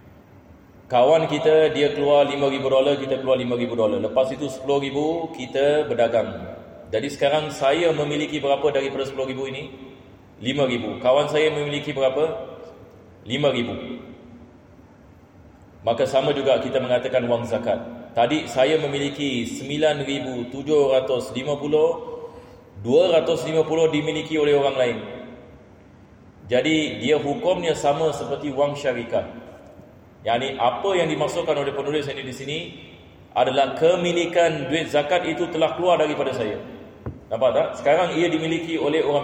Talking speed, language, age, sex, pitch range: 125 wpm, Malay, 30-49, male, 125-155 Hz